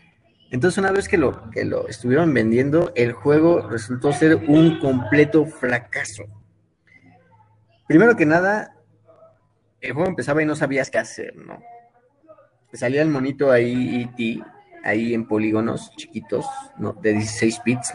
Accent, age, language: Mexican, 30-49, Spanish